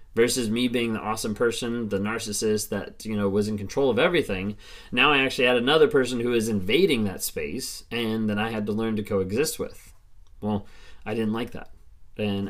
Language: English